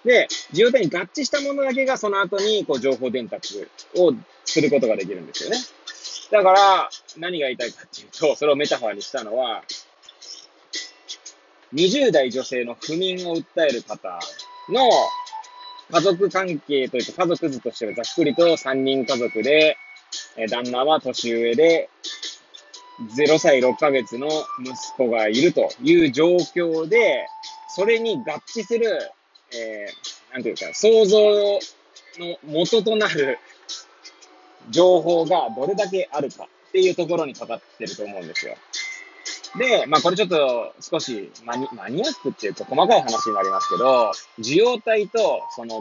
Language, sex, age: Japanese, male, 20-39